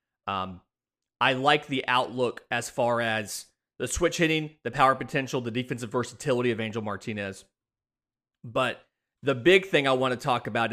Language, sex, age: English, male, 30-49